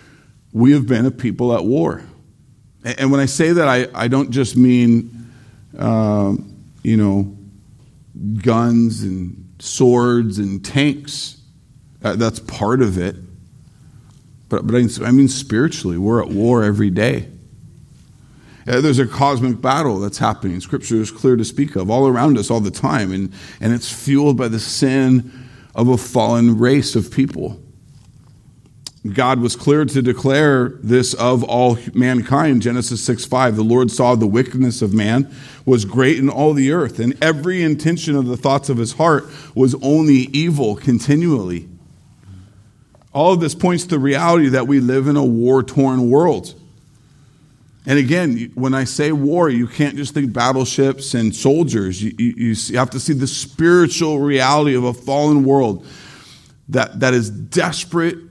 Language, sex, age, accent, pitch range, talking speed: English, male, 50-69, American, 115-140 Hz, 150 wpm